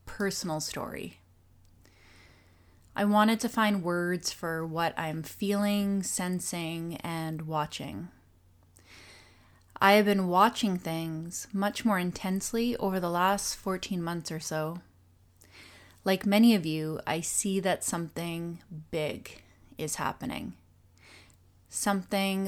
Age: 20-39